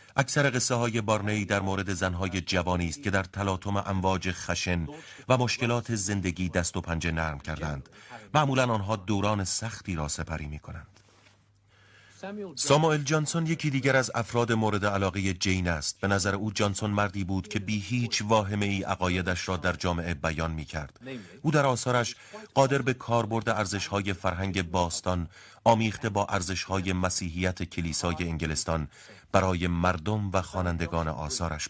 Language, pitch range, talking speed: Persian, 90-115 Hz, 150 wpm